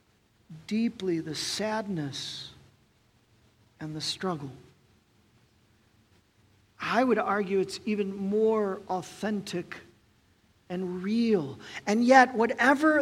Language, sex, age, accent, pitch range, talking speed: English, male, 50-69, American, 145-230 Hz, 85 wpm